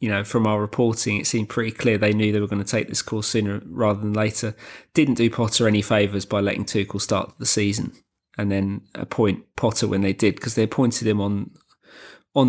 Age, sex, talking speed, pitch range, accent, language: 20-39, male, 220 wpm, 105-130 Hz, British, English